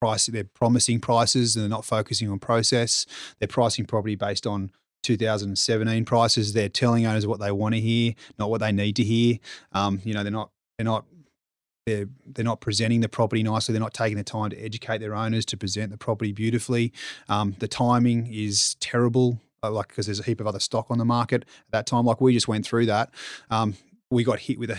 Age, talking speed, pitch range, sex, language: 30-49, 220 wpm, 105-120 Hz, male, English